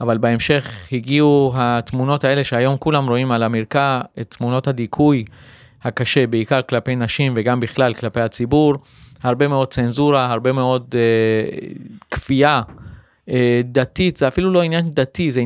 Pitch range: 120-140 Hz